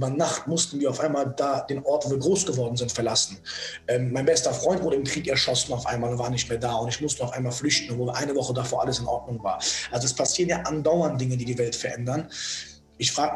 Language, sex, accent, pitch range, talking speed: German, male, German, 130-160 Hz, 250 wpm